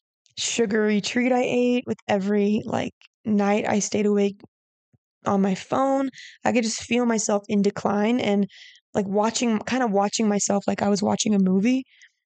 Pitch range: 200-245 Hz